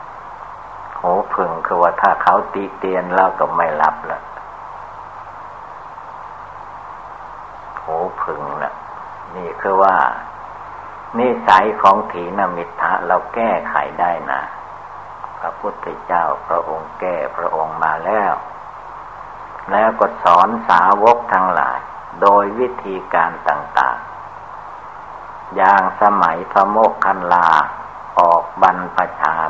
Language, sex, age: Thai, male, 60-79